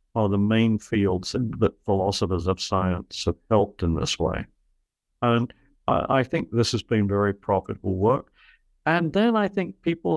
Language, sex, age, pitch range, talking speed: English, male, 60-79, 100-130 Hz, 160 wpm